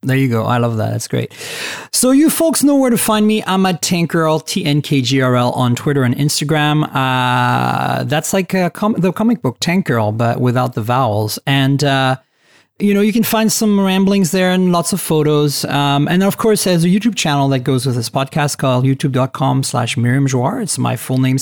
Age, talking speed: 40-59, 205 wpm